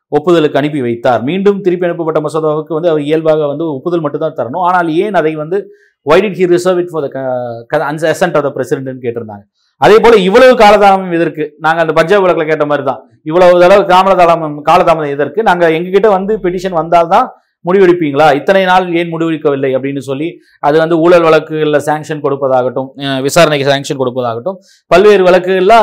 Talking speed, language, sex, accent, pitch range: 145 wpm, Tamil, male, native, 150-195 Hz